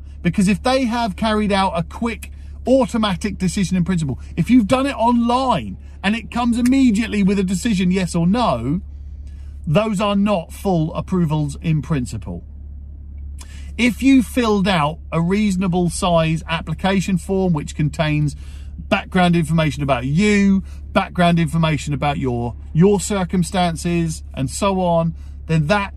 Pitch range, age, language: 135-205 Hz, 50-69, English